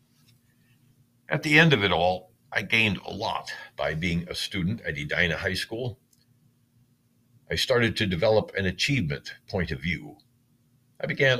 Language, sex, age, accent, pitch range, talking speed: English, male, 60-79, American, 95-125 Hz, 155 wpm